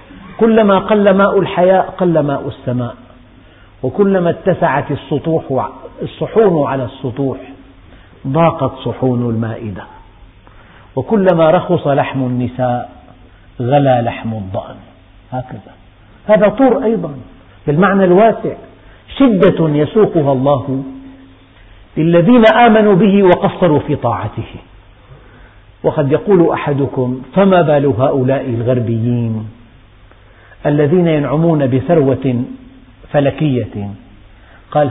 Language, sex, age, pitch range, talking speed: Arabic, male, 50-69, 110-150 Hz, 85 wpm